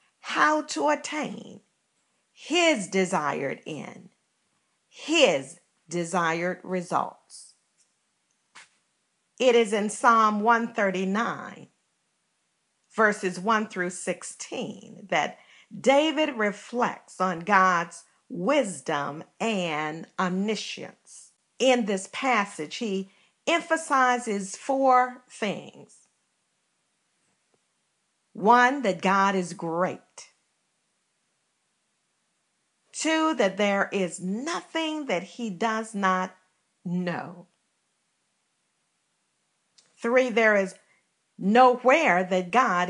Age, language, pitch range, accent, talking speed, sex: 50-69, English, 185-245 Hz, American, 75 wpm, female